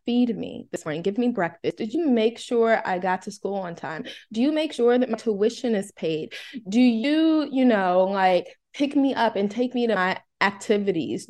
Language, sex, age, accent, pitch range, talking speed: English, female, 20-39, American, 195-255 Hz, 215 wpm